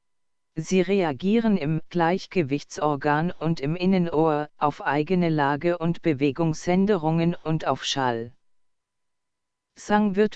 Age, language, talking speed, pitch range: 40-59, German, 100 wpm, 150-180 Hz